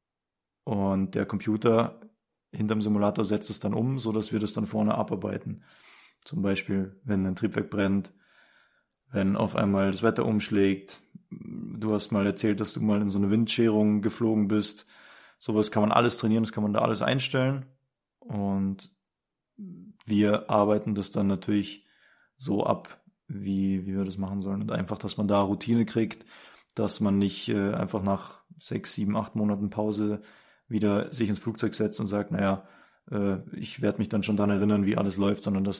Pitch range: 100-110 Hz